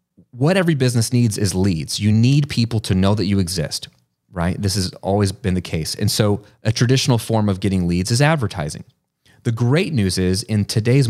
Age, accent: 30-49, American